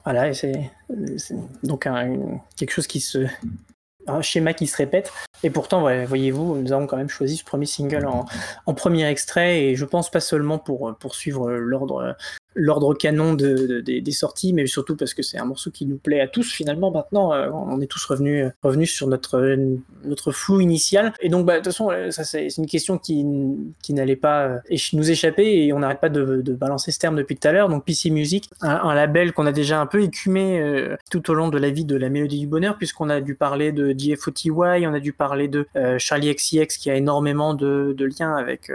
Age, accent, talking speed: 20-39, French, 215 wpm